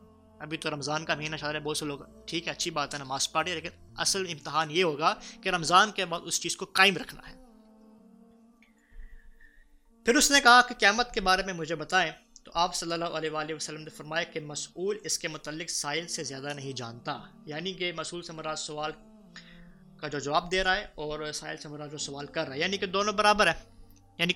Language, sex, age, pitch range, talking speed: Urdu, male, 20-39, 150-195 Hz, 210 wpm